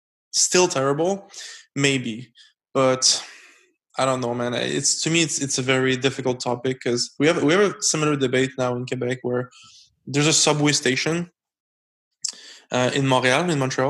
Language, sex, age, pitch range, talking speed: English, male, 20-39, 130-150 Hz, 165 wpm